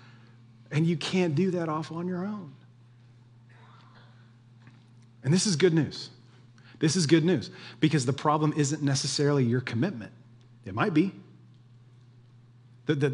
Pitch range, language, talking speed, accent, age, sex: 120-155 Hz, English, 135 wpm, American, 30-49, male